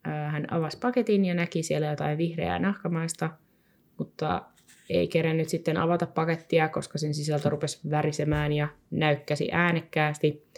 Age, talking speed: 20-39, 130 wpm